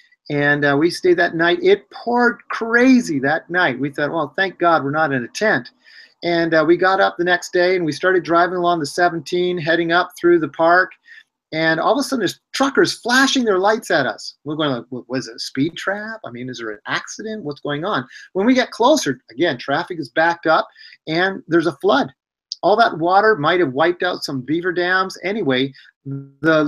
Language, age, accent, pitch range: English, 30-49, American, 155-215 Hz